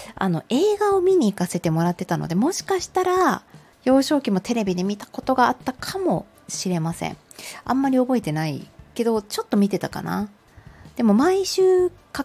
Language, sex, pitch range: Japanese, female, 165-255 Hz